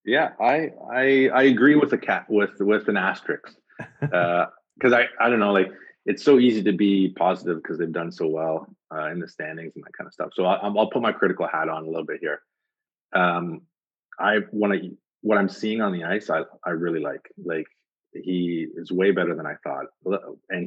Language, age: English, 30-49